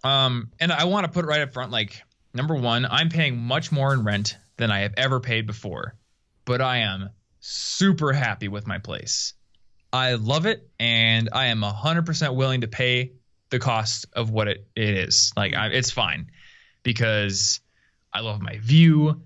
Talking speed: 185 wpm